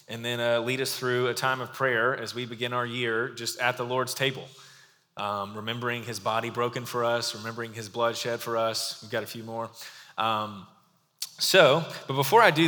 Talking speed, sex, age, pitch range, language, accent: 210 wpm, male, 20-39, 115-135 Hz, English, American